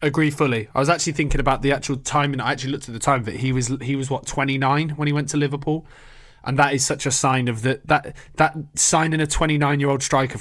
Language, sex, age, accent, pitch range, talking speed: English, male, 20-39, British, 120-145 Hz, 260 wpm